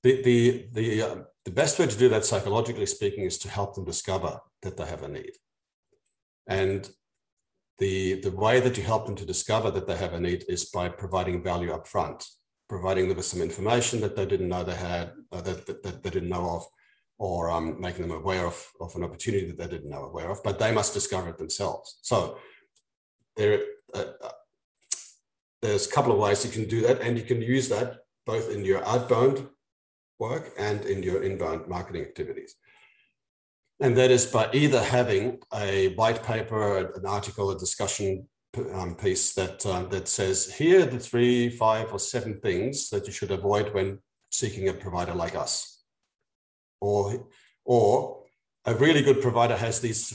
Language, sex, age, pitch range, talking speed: English, male, 50-69, 95-130 Hz, 185 wpm